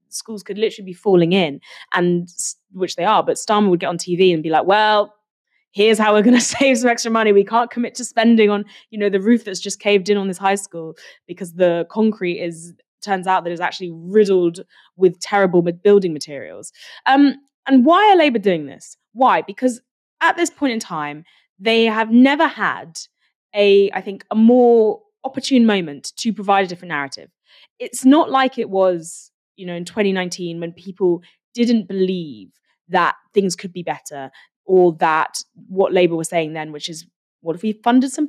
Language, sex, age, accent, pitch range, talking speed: English, female, 20-39, British, 180-240 Hz, 190 wpm